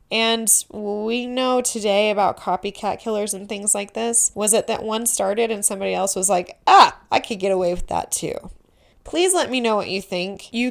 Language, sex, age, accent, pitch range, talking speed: English, female, 20-39, American, 190-235 Hz, 205 wpm